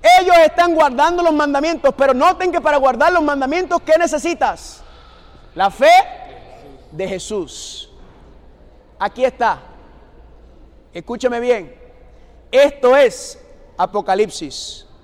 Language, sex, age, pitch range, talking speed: Spanish, male, 30-49, 275-345 Hz, 100 wpm